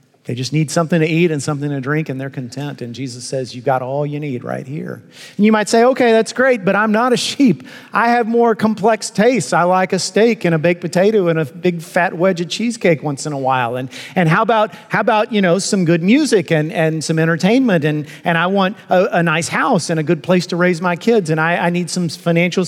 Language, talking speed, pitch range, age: English, 255 wpm, 135-180 Hz, 40-59